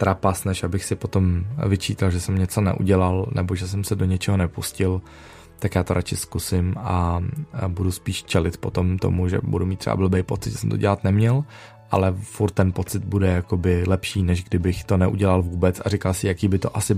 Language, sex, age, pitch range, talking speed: Czech, male, 20-39, 90-105 Hz, 200 wpm